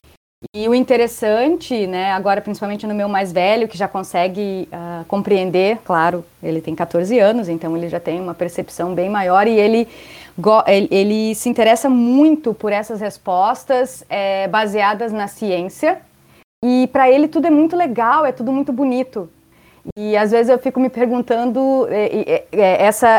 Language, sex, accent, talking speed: Portuguese, female, Brazilian, 170 wpm